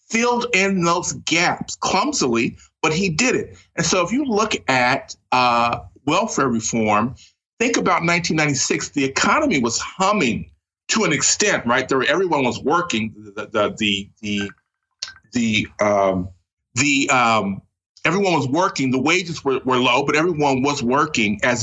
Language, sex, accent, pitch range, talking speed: English, male, American, 110-170 Hz, 155 wpm